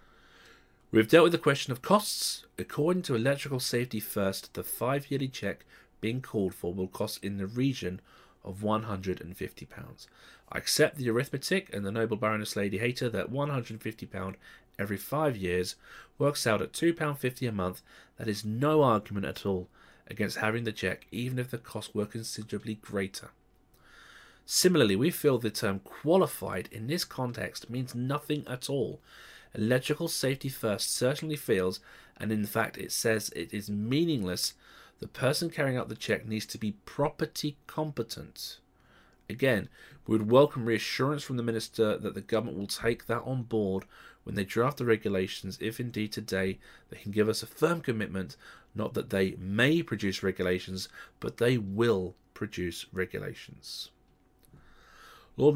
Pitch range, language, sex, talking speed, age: 100-130 Hz, English, male, 155 wpm, 30-49